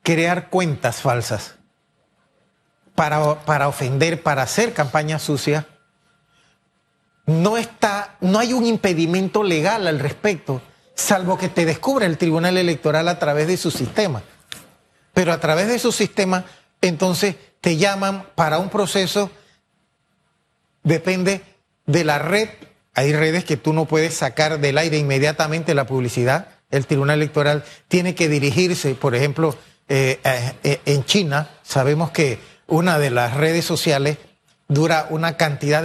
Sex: male